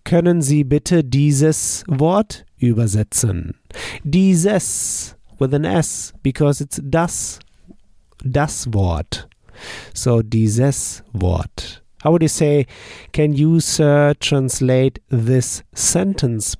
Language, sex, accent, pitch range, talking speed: German, male, German, 110-150 Hz, 100 wpm